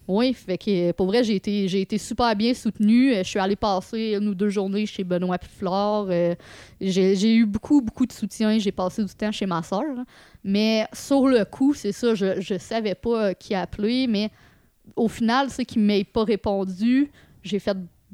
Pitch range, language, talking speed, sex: 190-235 Hz, French, 200 wpm, female